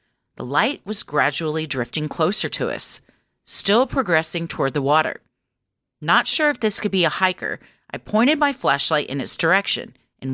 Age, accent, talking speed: 40-59, American, 170 wpm